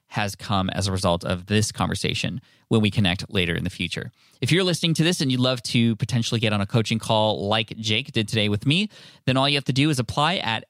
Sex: male